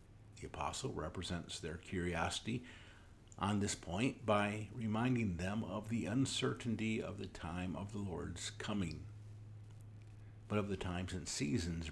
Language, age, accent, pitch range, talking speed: English, 50-69, American, 90-110 Hz, 135 wpm